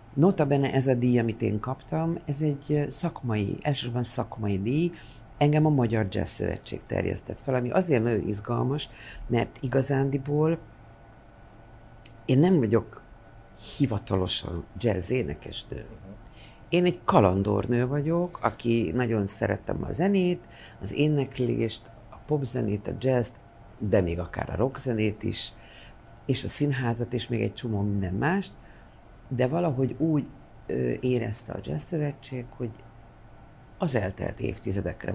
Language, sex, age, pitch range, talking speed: English, female, 50-69, 110-130 Hz, 125 wpm